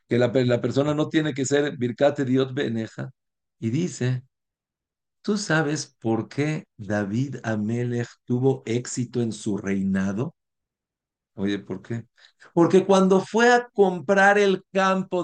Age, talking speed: 50-69, 135 wpm